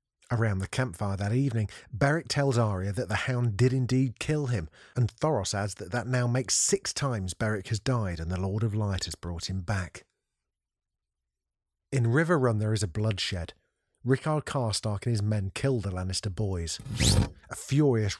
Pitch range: 100-130 Hz